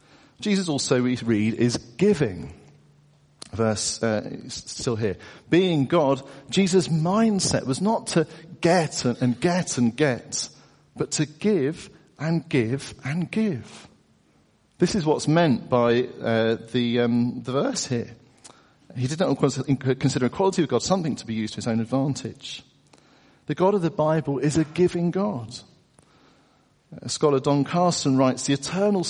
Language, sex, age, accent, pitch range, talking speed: English, male, 50-69, British, 120-175 Hz, 145 wpm